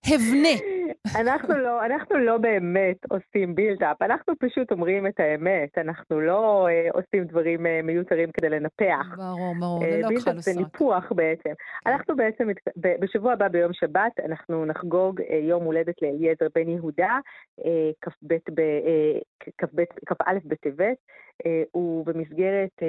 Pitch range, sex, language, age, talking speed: 165-200 Hz, female, Hebrew, 30-49, 100 wpm